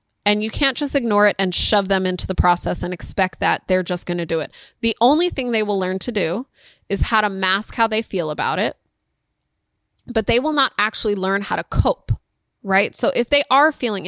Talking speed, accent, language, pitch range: 225 wpm, American, English, 185-230 Hz